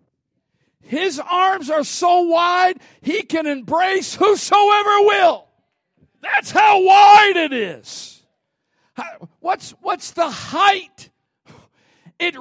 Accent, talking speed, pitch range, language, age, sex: American, 95 wpm, 245-370 Hz, English, 50-69, male